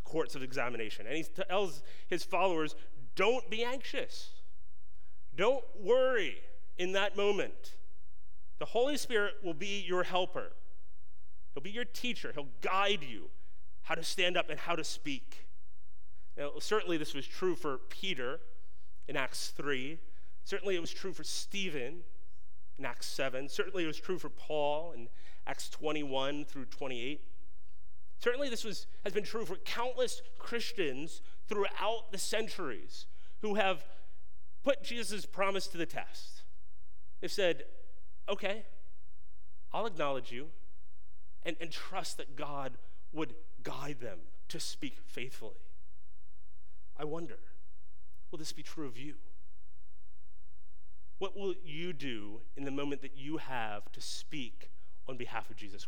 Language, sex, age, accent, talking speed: English, male, 40-59, American, 140 wpm